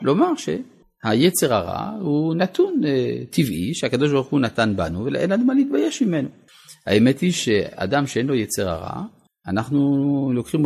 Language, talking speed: Hebrew, 145 wpm